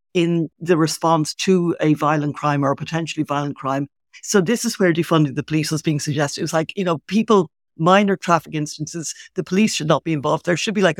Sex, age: female, 60-79